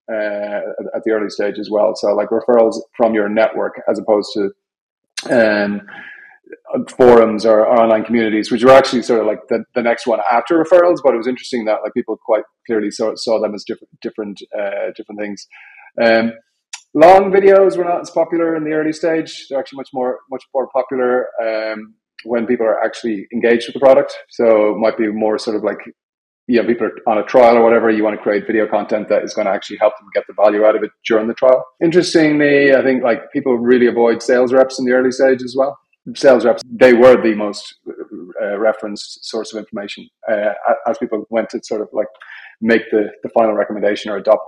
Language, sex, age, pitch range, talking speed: English, male, 30-49, 110-135 Hz, 215 wpm